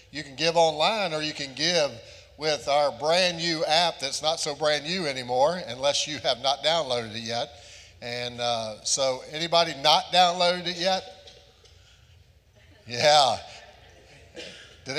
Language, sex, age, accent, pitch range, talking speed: English, male, 50-69, American, 125-155 Hz, 145 wpm